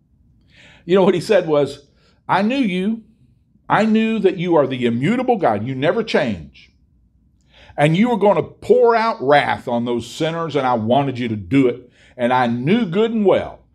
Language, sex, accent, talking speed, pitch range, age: English, male, American, 190 wpm, 115-175 Hz, 50-69